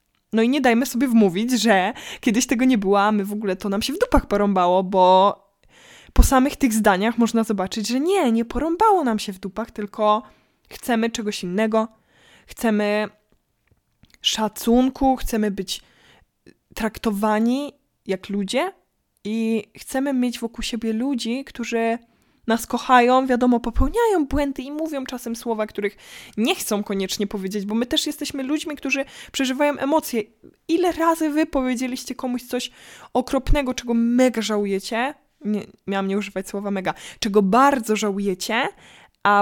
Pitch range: 210-265 Hz